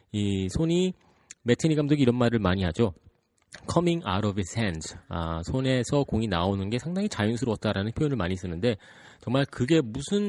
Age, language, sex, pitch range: 30-49, Korean, male, 90-125 Hz